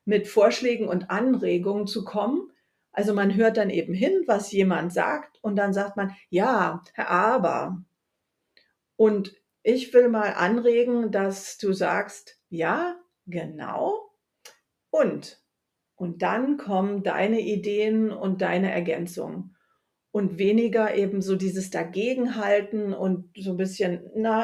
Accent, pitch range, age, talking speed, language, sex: German, 185-235 Hz, 50-69, 125 wpm, German, female